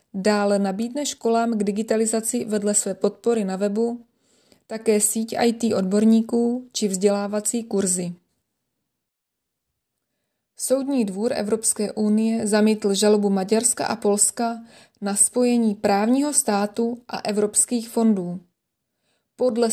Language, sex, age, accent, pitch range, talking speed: Czech, female, 20-39, native, 205-235 Hz, 105 wpm